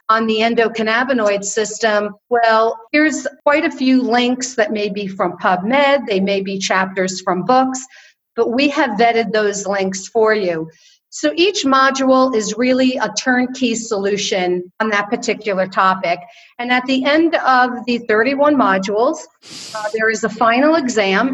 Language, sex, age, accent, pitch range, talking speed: English, female, 50-69, American, 215-280 Hz, 155 wpm